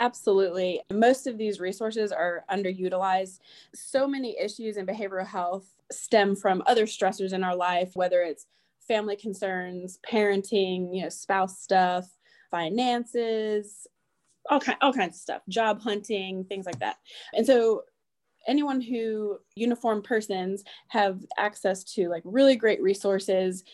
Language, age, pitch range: English, 20-39, 185-215 Hz